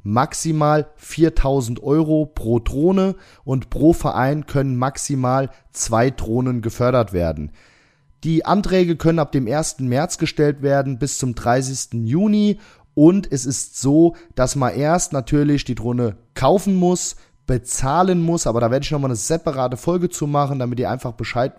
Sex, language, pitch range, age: male, German, 120-160 Hz, 30-49